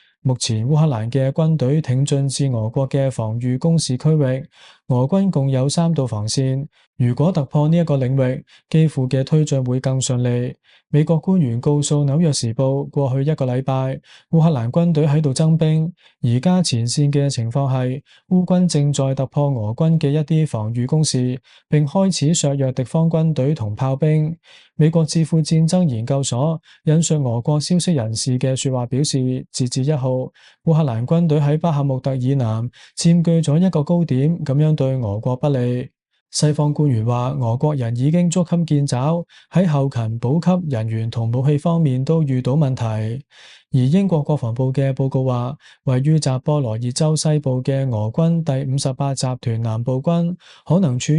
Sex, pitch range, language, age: male, 130-160 Hz, Chinese, 20-39